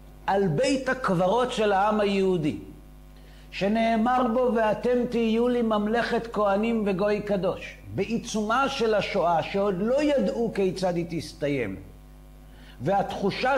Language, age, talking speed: Hebrew, 50-69, 110 wpm